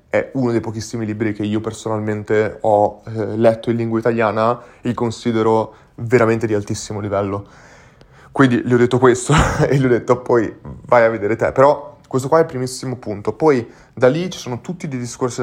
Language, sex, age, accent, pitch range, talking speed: Italian, male, 20-39, native, 110-130 Hz, 190 wpm